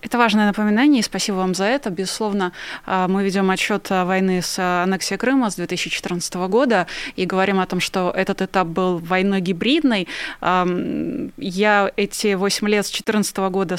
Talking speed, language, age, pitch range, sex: 155 wpm, Russian, 20-39, 185-220 Hz, female